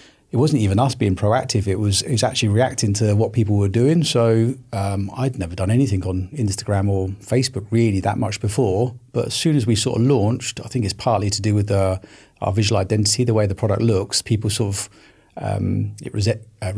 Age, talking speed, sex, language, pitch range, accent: 30-49, 220 wpm, male, English, 100-120 Hz, British